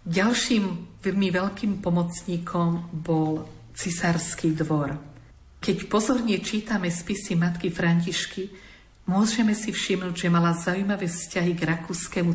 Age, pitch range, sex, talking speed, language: 50-69, 165-185 Hz, female, 105 wpm, Slovak